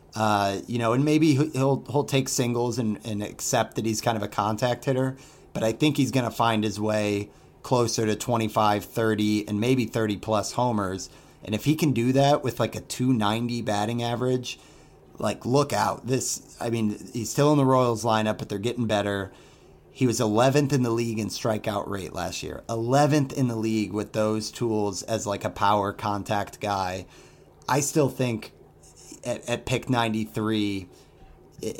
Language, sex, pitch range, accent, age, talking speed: English, male, 105-130 Hz, American, 30-49, 175 wpm